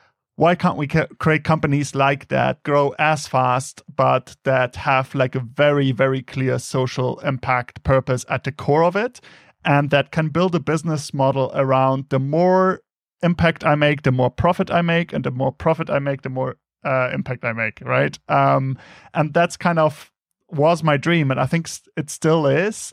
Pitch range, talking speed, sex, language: 135-160 Hz, 185 wpm, male, English